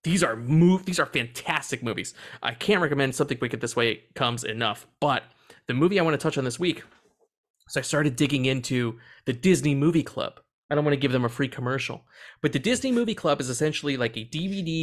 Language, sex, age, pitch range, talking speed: English, male, 30-49, 125-170 Hz, 220 wpm